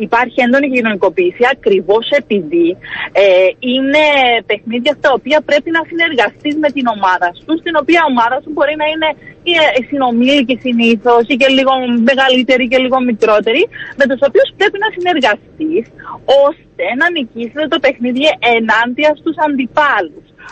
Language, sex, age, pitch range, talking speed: Greek, female, 30-49, 230-300 Hz, 150 wpm